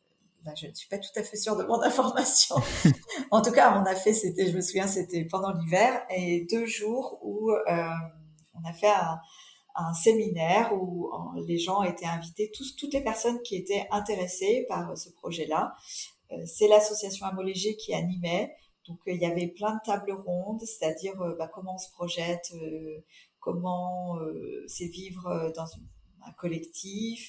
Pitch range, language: 170-210 Hz, French